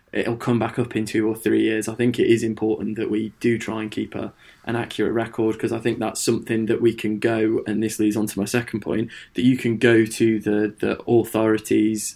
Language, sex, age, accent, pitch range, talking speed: English, male, 20-39, British, 110-120 Hz, 235 wpm